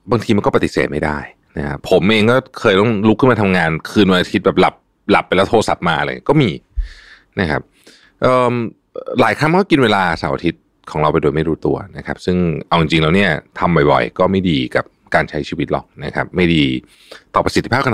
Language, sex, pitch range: Thai, male, 80-100 Hz